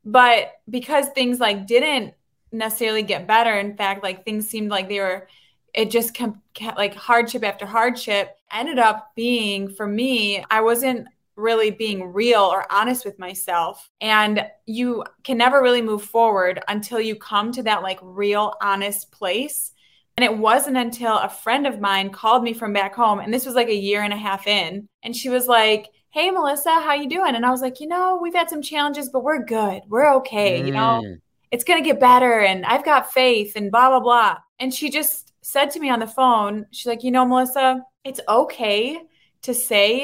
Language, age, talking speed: English, 20-39, 200 wpm